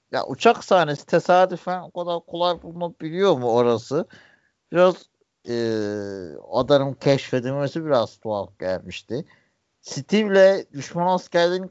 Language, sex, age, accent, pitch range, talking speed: Turkish, male, 60-79, native, 125-170 Hz, 100 wpm